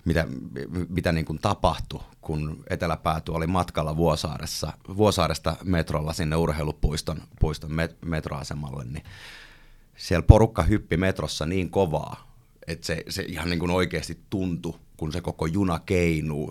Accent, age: native, 30-49